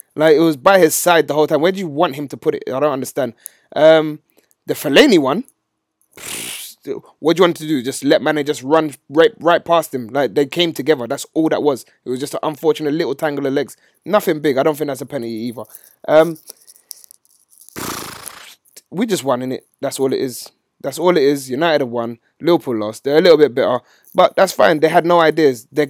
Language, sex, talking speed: English, male, 230 wpm